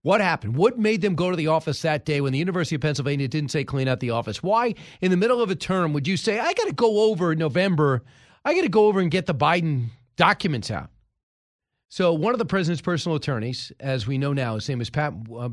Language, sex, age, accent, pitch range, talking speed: English, male, 40-59, American, 130-180 Hz, 255 wpm